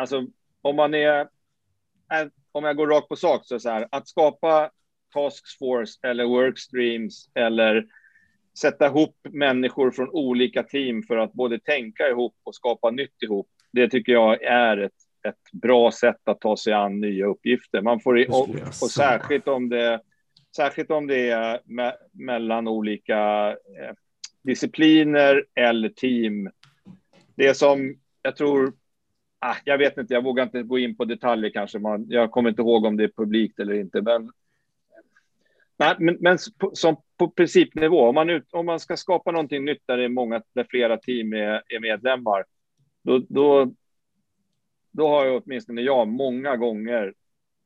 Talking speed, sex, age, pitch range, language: 165 wpm, male, 40-59, 115-145 Hz, Swedish